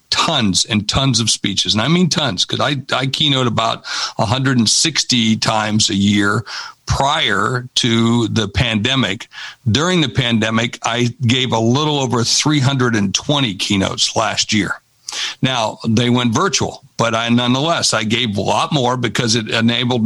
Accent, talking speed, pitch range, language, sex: American, 145 wpm, 115-140 Hz, English, male